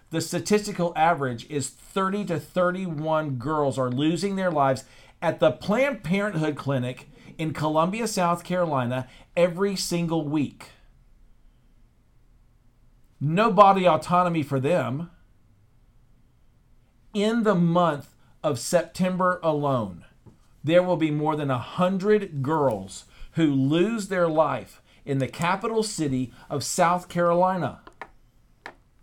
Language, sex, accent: English, male, American